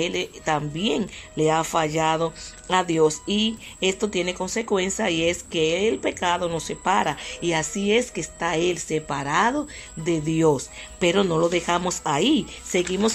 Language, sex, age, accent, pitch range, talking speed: Spanish, female, 40-59, American, 170-215 Hz, 150 wpm